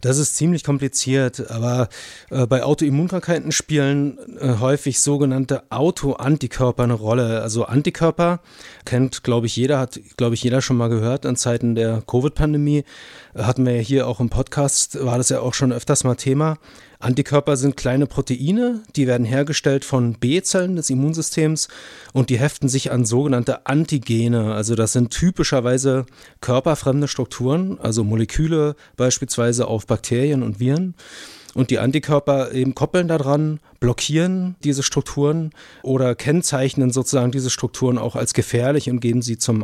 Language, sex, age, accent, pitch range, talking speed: German, male, 30-49, German, 120-145 Hz, 150 wpm